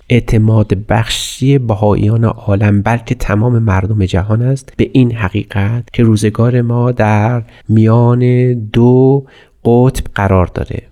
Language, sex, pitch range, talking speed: Persian, male, 110-130 Hz, 115 wpm